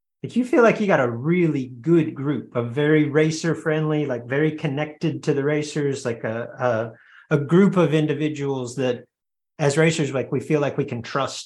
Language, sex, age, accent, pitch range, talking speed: English, male, 30-49, American, 130-165 Hz, 200 wpm